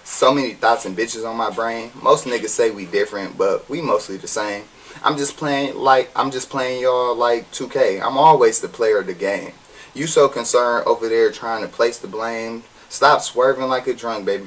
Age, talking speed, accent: 20-39, 210 wpm, American